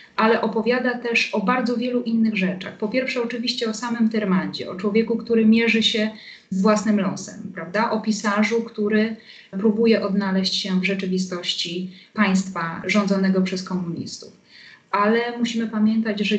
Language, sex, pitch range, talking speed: Polish, female, 185-220 Hz, 145 wpm